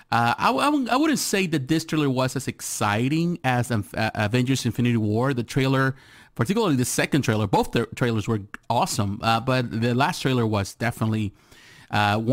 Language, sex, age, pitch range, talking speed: English, male, 30-49, 110-145 Hz, 170 wpm